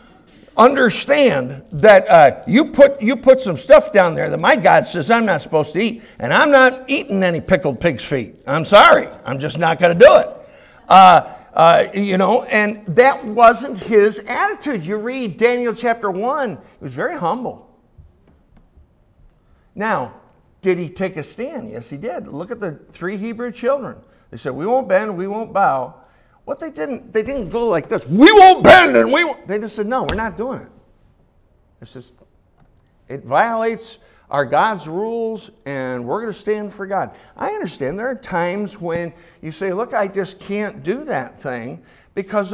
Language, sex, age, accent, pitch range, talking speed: English, male, 50-69, American, 170-240 Hz, 185 wpm